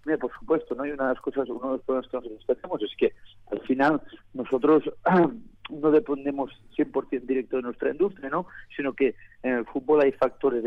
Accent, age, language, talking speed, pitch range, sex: Spanish, 50-69, Spanish, 200 wpm, 120-145 Hz, male